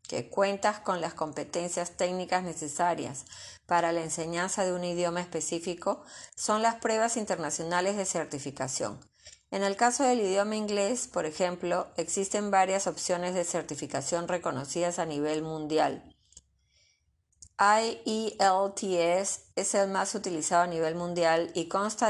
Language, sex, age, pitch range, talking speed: Spanish, female, 30-49, 165-200 Hz, 130 wpm